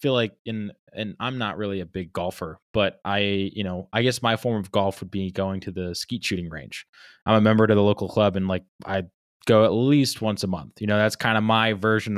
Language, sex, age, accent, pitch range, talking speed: English, male, 20-39, American, 95-115 Hz, 250 wpm